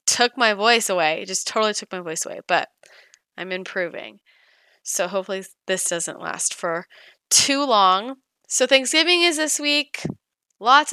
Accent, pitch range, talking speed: American, 185-270 Hz, 155 wpm